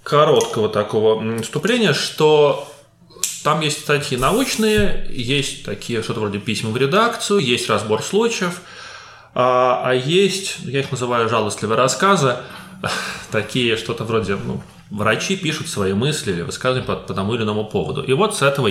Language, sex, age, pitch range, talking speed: English, male, 20-39, 110-155 Hz, 145 wpm